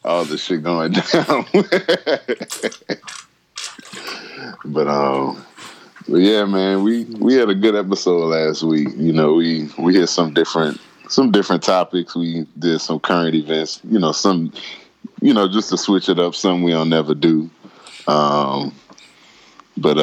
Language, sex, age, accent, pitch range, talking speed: English, male, 20-39, American, 75-90 Hz, 150 wpm